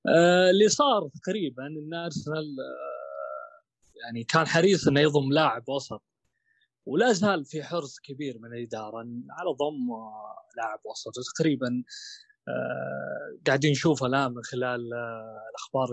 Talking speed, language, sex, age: 125 wpm, Arabic, male, 20-39